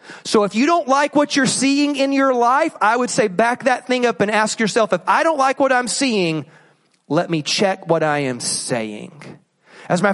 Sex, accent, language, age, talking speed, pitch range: male, American, English, 30-49, 225 wpm, 160-215 Hz